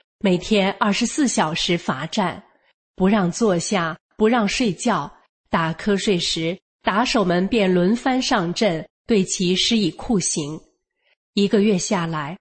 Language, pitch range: Chinese, 180-225 Hz